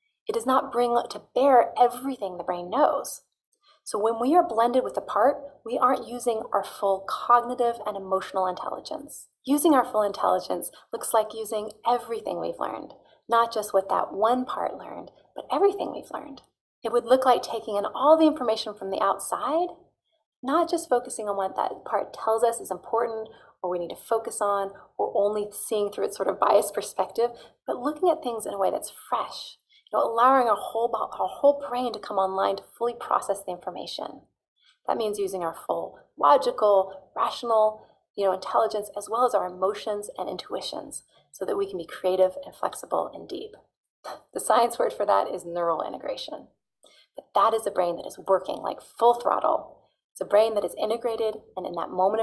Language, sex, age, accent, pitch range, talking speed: English, female, 30-49, American, 205-255 Hz, 190 wpm